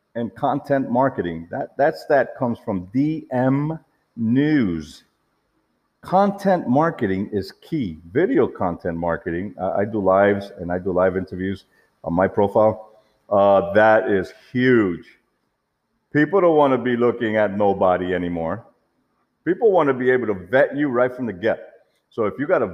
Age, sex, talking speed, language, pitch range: 50-69, male, 155 wpm, English, 100-155 Hz